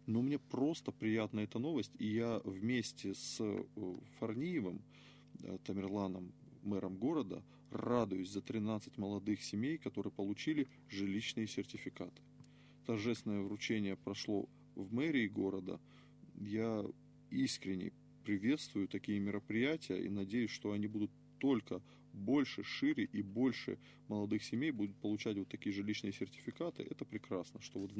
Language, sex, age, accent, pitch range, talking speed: Russian, male, 20-39, native, 100-120 Hz, 120 wpm